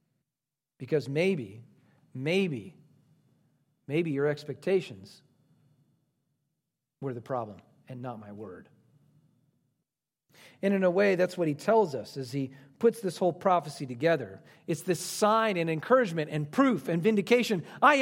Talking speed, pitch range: 130 wpm, 140-180 Hz